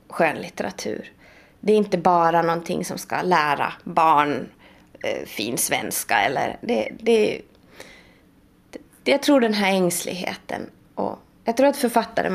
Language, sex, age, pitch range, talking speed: Swedish, female, 20-39, 185-260 Hz, 130 wpm